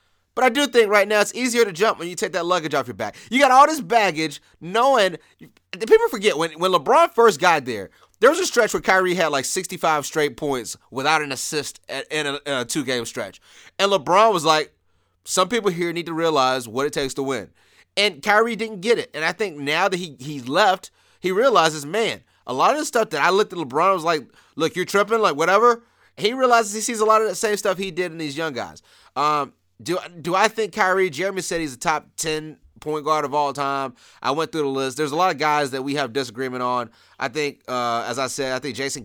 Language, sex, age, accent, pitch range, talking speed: English, male, 30-49, American, 135-190 Hz, 240 wpm